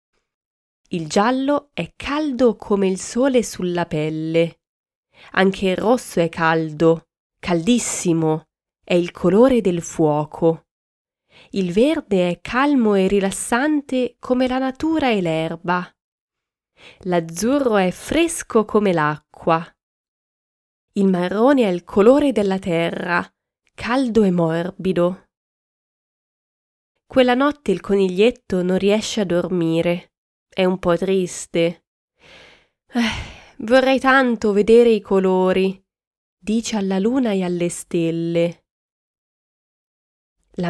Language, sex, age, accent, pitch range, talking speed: Italian, female, 20-39, native, 175-240 Hz, 105 wpm